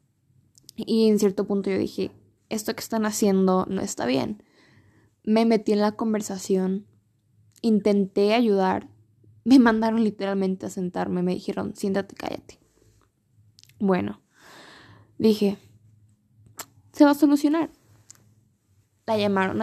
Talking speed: 115 wpm